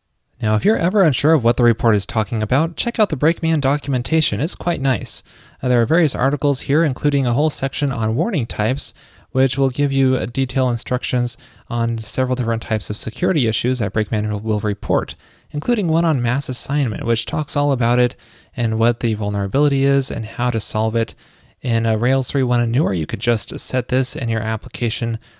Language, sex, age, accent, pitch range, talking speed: English, male, 20-39, American, 110-140 Hz, 195 wpm